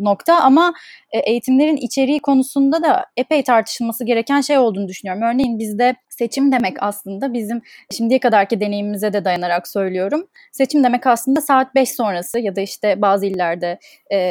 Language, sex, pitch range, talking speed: Turkish, female, 215-265 Hz, 145 wpm